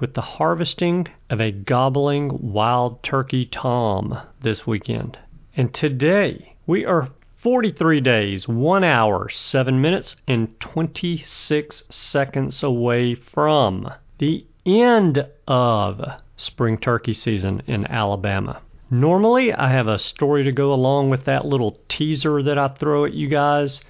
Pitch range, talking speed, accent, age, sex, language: 110-145 Hz, 130 wpm, American, 40-59, male, English